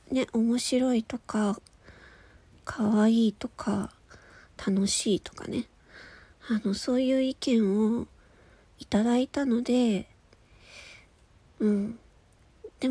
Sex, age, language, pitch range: female, 40-59, Japanese, 215-275 Hz